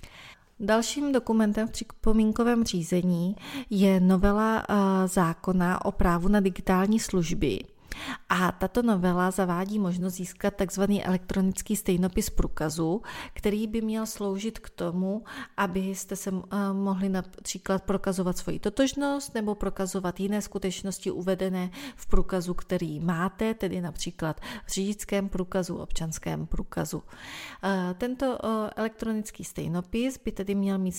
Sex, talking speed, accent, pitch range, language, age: female, 115 wpm, native, 180-215 Hz, Czech, 30-49